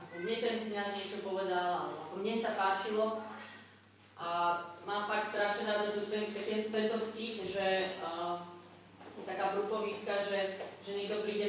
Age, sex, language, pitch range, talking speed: 20-39, female, Slovak, 190-215 Hz, 140 wpm